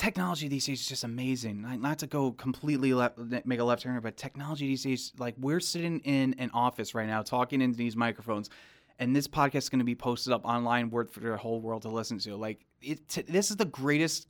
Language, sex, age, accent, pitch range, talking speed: English, male, 20-39, American, 125-150 Hz, 230 wpm